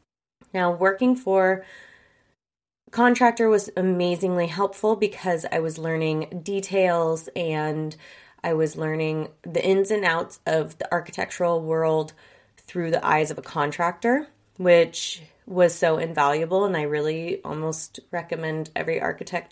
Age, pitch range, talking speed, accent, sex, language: 20-39, 155-190 Hz, 130 wpm, American, female, English